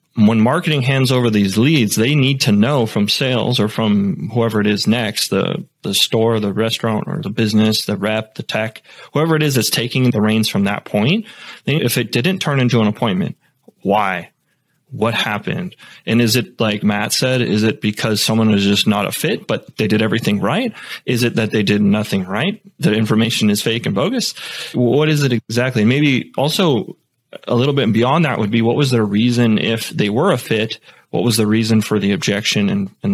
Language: English